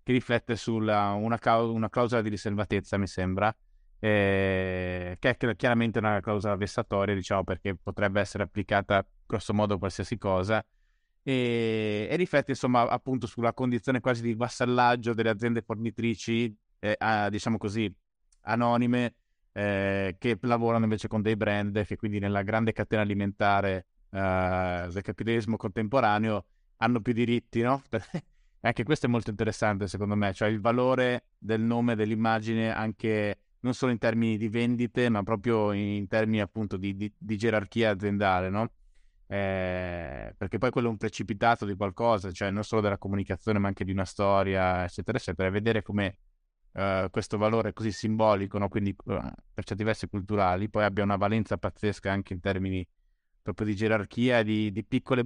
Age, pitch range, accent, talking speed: 20-39, 100-115 Hz, native, 155 wpm